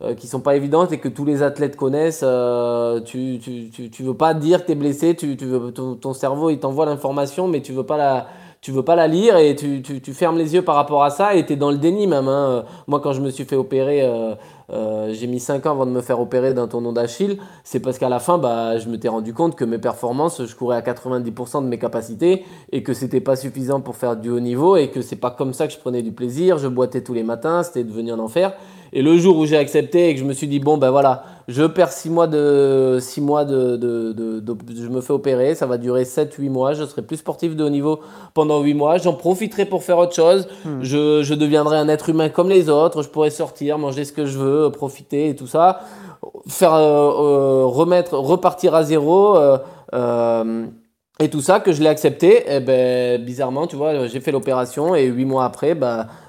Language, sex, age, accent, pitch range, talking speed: French, male, 20-39, French, 125-160 Hz, 250 wpm